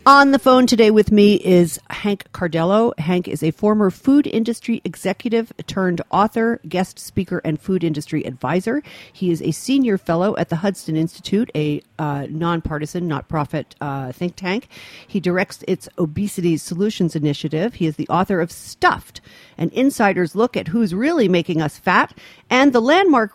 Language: English